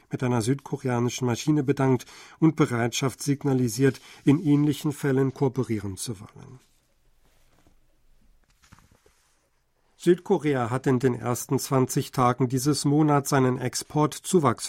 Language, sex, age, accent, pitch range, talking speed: German, male, 50-69, German, 125-145 Hz, 100 wpm